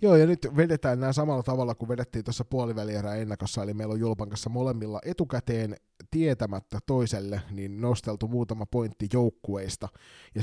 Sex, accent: male, native